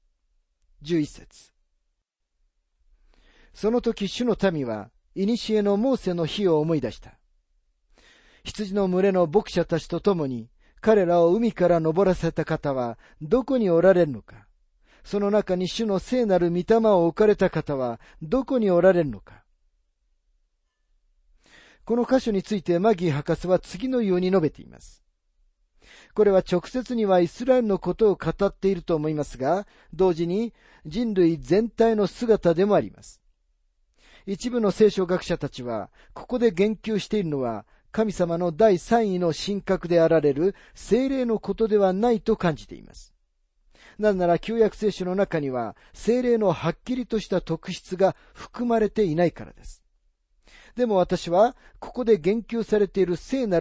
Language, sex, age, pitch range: Japanese, male, 40-59, 125-210 Hz